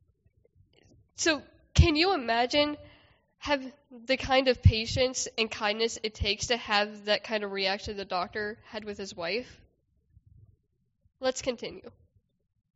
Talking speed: 125 wpm